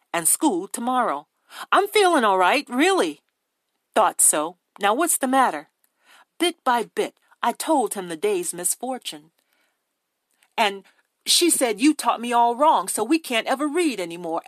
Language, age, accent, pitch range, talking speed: English, 40-59, American, 195-305 Hz, 160 wpm